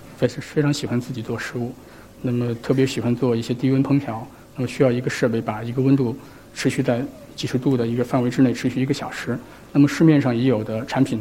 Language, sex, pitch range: Chinese, male, 120-135 Hz